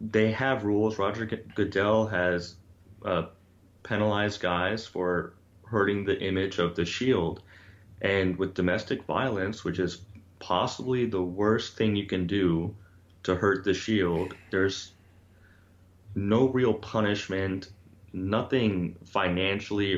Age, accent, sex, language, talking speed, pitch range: 30-49, American, male, English, 115 wpm, 90-100 Hz